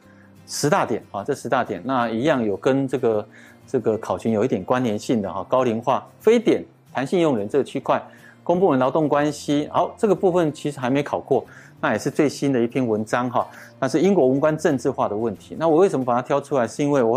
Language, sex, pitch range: Chinese, male, 110-140 Hz